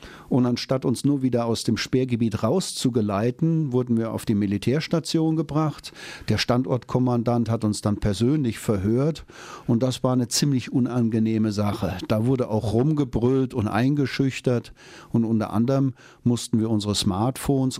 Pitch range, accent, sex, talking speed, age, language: 110-130 Hz, German, male, 140 wpm, 40-59, German